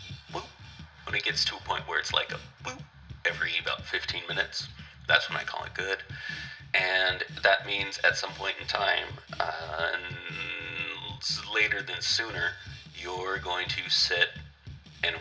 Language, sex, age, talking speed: English, male, 30-49, 150 wpm